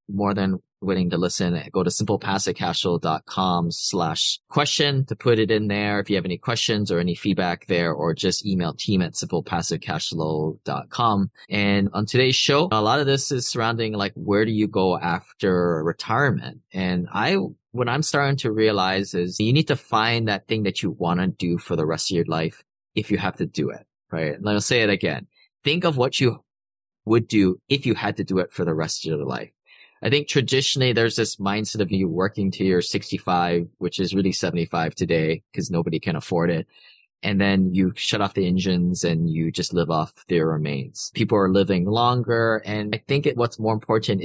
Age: 20-39